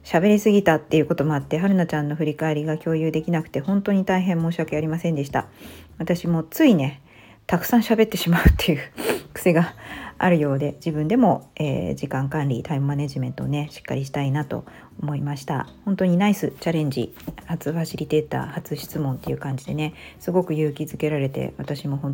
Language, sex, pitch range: Japanese, female, 140-180 Hz